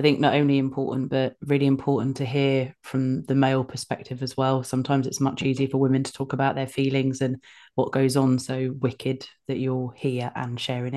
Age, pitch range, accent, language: 30-49, 135-155 Hz, British, English